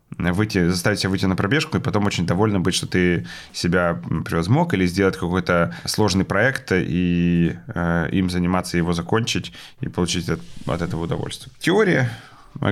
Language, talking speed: Ukrainian, 155 wpm